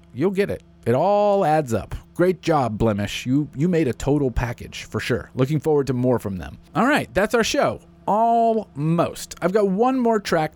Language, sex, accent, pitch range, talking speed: English, male, American, 110-150 Hz, 200 wpm